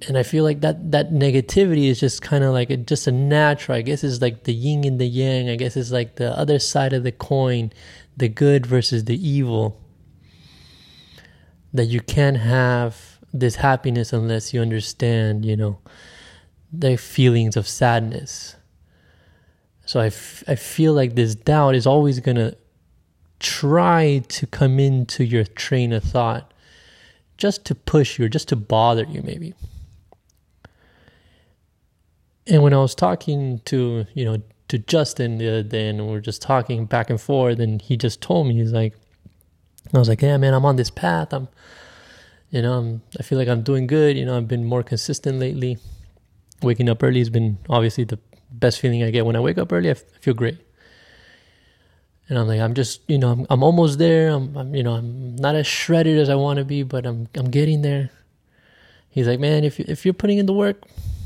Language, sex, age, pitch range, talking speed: English, male, 20-39, 110-140 Hz, 195 wpm